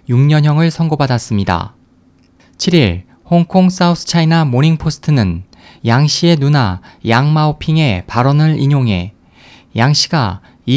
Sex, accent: male, native